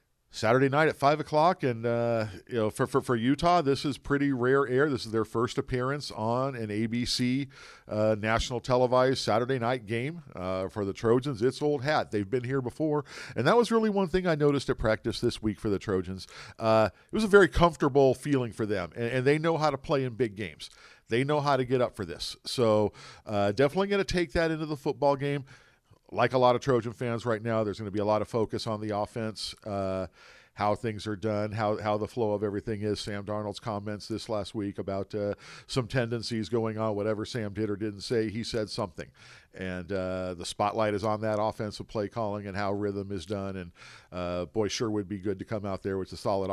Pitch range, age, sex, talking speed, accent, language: 105-130 Hz, 50-69, male, 225 wpm, American, English